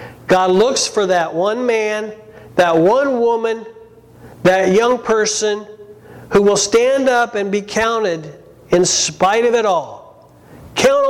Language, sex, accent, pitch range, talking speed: English, male, American, 180-240 Hz, 135 wpm